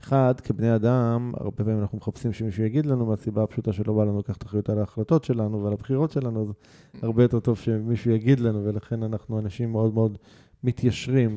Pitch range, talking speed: 105-125 Hz, 190 wpm